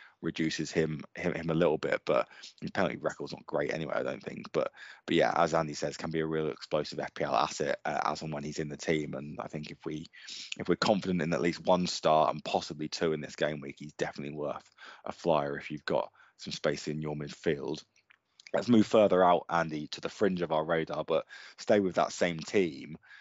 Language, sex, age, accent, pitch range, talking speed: English, male, 20-39, British, 80-100 Hz, 235 wpm